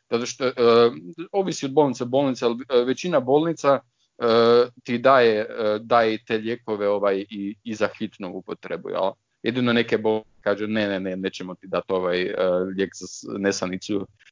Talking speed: 165 wpm